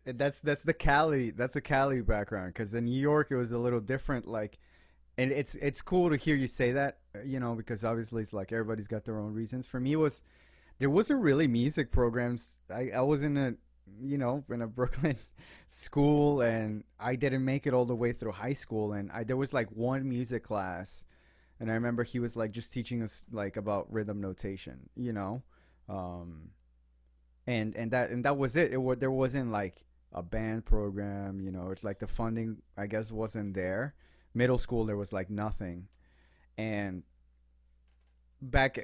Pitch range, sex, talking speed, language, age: 100-130 Hz, male, 195 wpm, English, 20-39